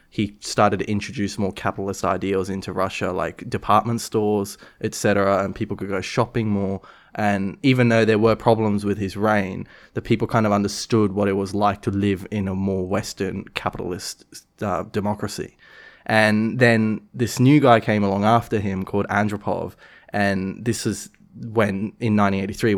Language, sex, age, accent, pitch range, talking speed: English, male, 20-39, Australian, 100-110 Hz, 165 wpm